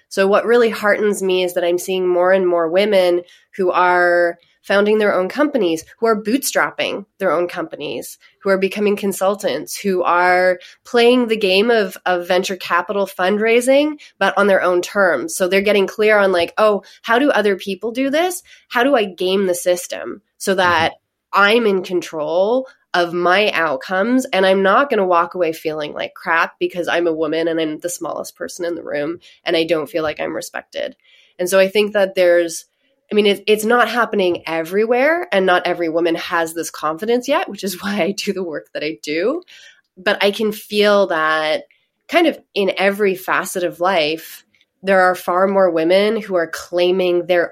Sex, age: female, 20-39